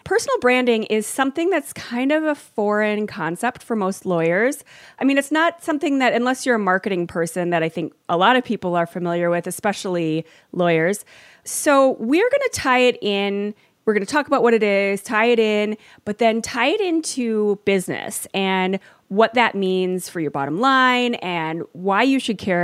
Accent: American